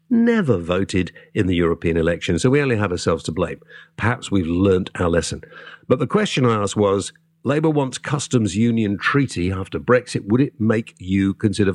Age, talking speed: 50-69, 185 wpm